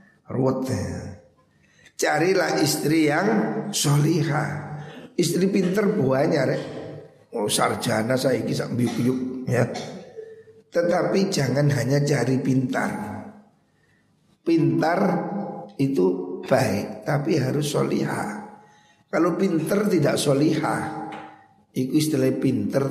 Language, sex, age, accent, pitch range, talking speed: Indonesian, male, 50-69, native, 120-170 Hz, 85 wpm